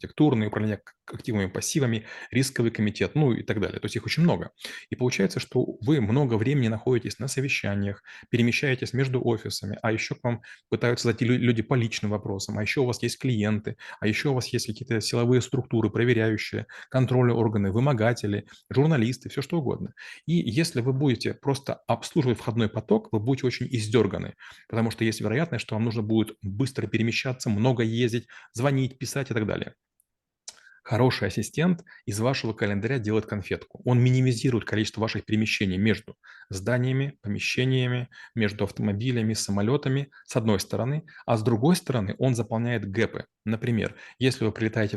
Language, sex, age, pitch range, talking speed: Russian, male, 30-49, 110-130 Hz, 160 wpm